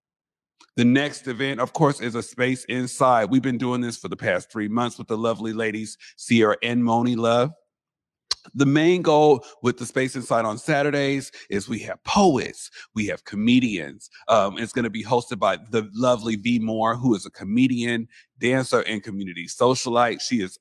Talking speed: 185 wpm